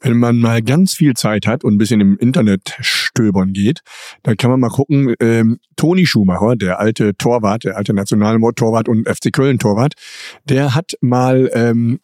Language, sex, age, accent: German, male, 50-69, German